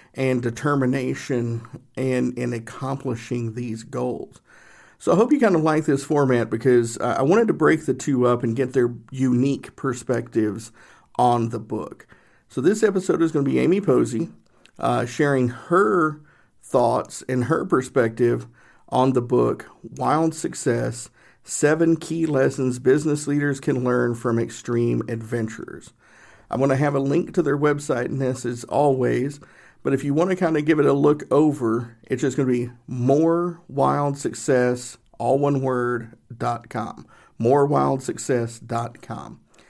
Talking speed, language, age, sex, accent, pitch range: 150 wpm, English, 50-69, male, American, 120-145 Hz